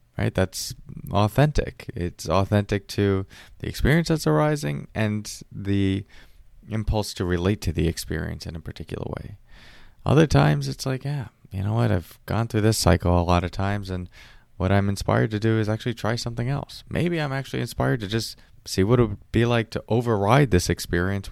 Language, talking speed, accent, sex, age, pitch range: English, 185 wpm, American, male, 20-39, 90-120 Hz